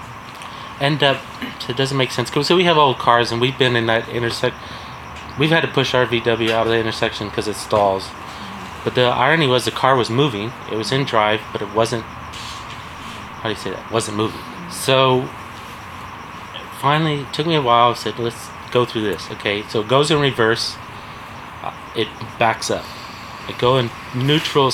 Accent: American